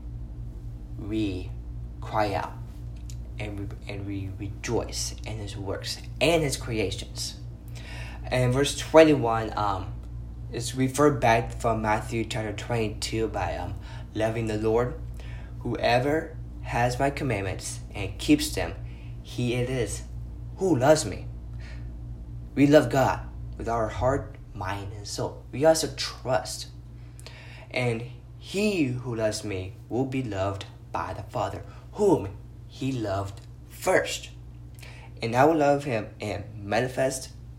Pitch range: 90-120 Hz